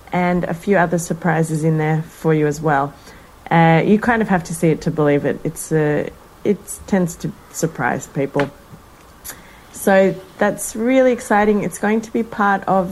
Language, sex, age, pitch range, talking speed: English, female, 30-49, 170-200 Hz, 180 wpm